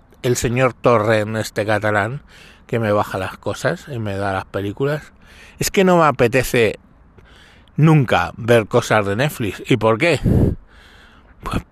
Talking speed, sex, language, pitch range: 155 wpm, male, Spanish, 95-130 Hz